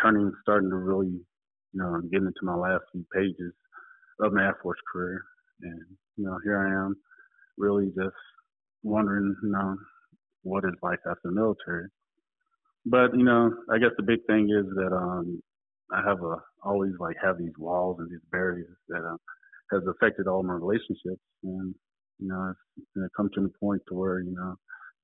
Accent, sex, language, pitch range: American, male, English, 90-110 Hz